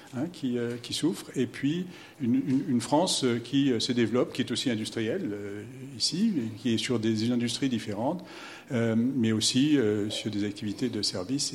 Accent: French